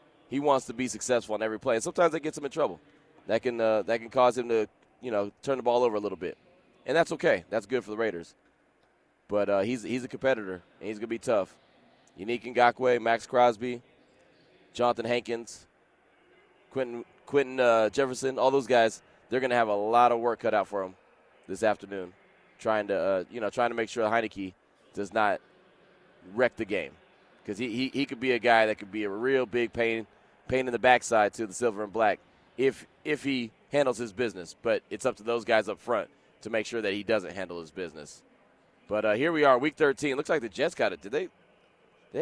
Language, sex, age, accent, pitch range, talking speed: English, male, 20-39, American, 110-130 Hz, 220 wpm